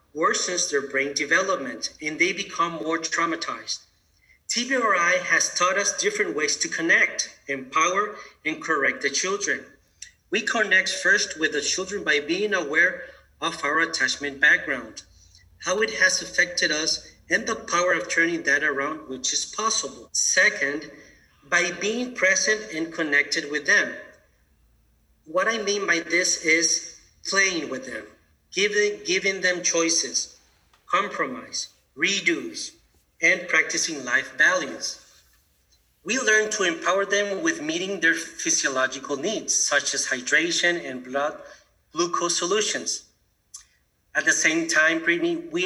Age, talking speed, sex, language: 40-59, 130 wpm, male, English